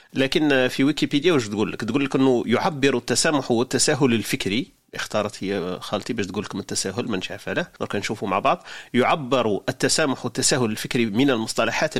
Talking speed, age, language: 160 wpm, 40-59, Arabic